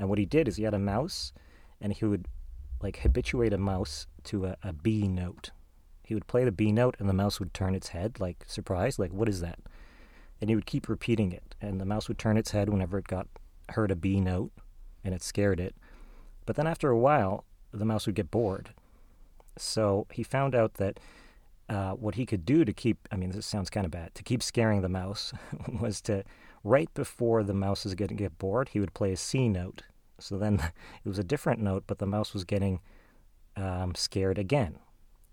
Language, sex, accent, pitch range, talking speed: English, male, American, 95-110 Hz, 220 wpm